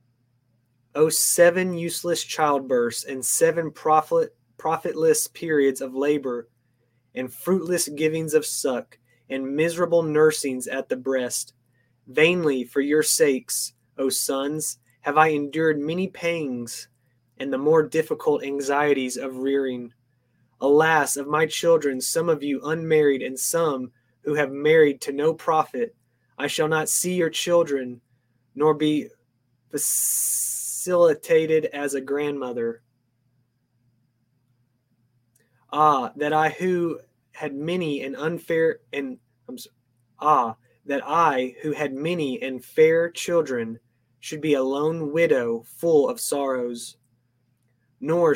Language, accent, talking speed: English, American, 120 wpm